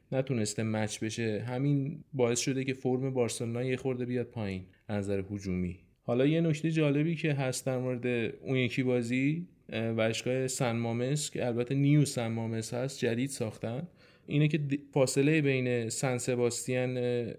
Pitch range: 120-145 Hz